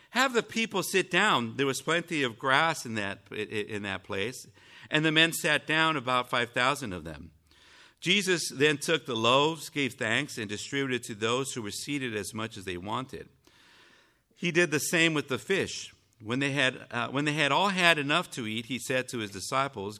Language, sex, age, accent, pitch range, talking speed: English, male, 50-69, American, 110-140 Hz, 200 wpm